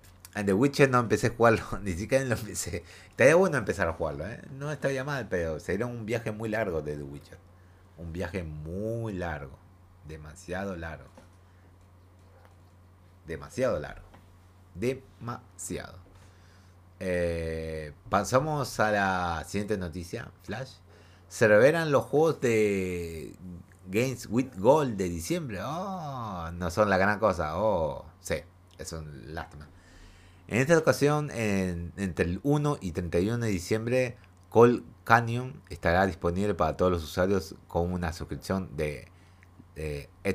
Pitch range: 90-105 Hz